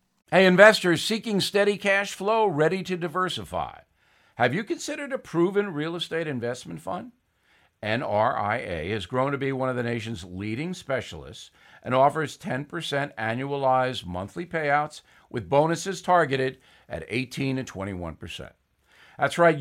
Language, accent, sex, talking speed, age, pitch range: English, American, male, 130 wpm, 50-69, 125-175 Hz